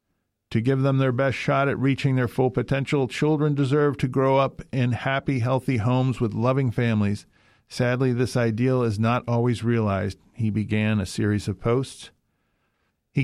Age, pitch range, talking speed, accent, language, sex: 50-69, 110-135 Hz, 170 wpm, American, English, male